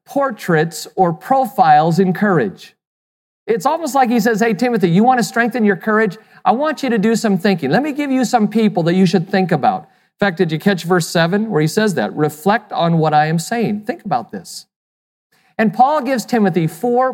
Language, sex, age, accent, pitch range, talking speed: English, male, 40-59, American, 175-230 Hz, 215 wpm